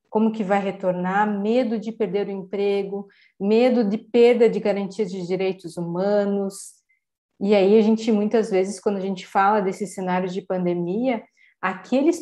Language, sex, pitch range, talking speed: Portuguese, female, 185-220 Hz, 155 wpm